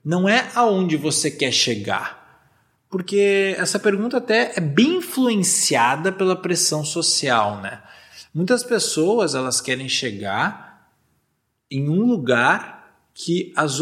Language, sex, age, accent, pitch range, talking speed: Portuguese, male, 20-39, Brazilian, 130-200 Hz, 115 wpm